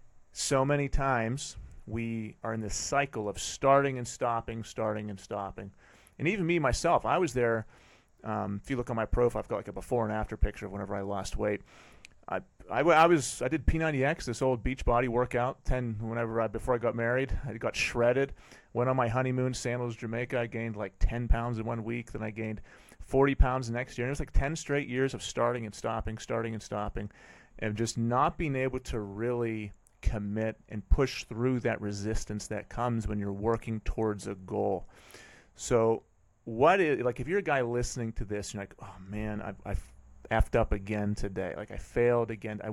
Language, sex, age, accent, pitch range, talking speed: English, male, 30-49, American, 105-125 Hz, 200 wpm